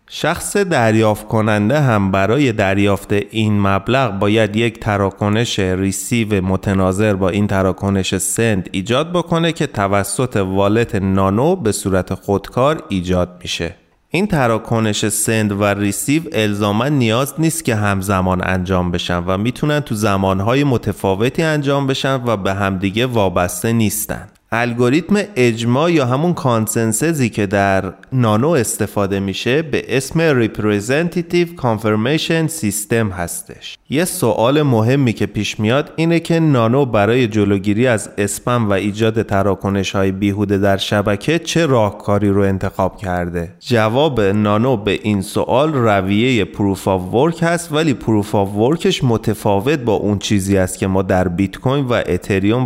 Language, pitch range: Persian, 100-125 Hz